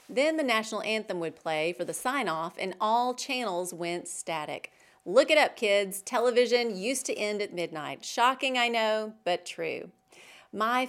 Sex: female